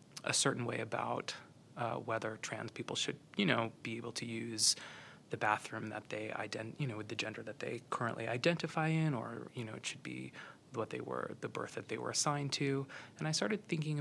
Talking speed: 210 wpm